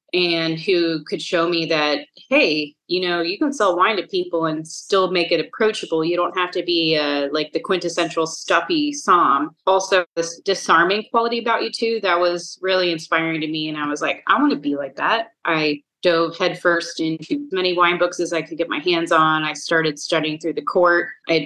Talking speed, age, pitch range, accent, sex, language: 215 wpm, 30-49, 160-180 Hz, American, female, English